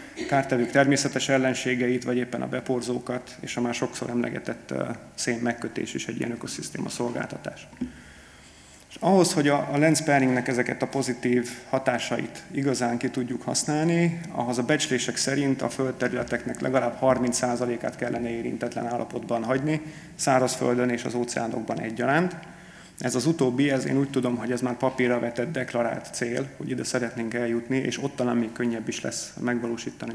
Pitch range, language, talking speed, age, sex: 120-135 Hz, Hungarian, 150 wpm, 30-49, male